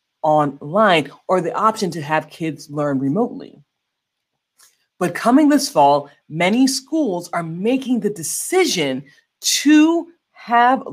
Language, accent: English, American